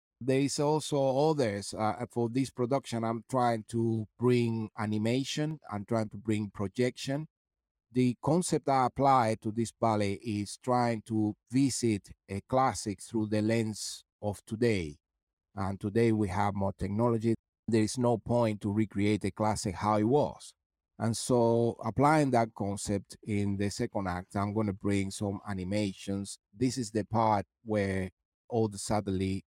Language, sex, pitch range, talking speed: English, male, 100-115 Hz, 155 wpm